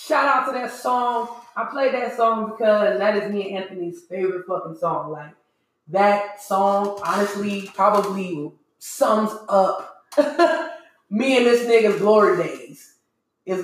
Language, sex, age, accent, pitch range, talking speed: English, female, 20-39, American, 195-255 Hz, 140 wpm